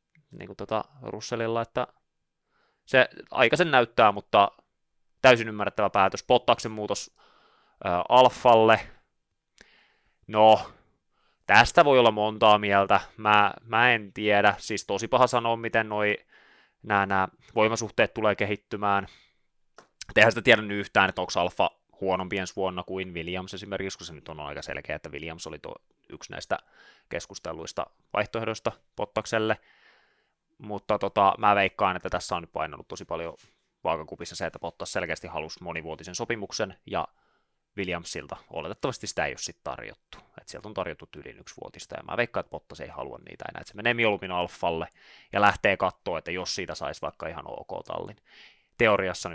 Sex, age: male, 20-39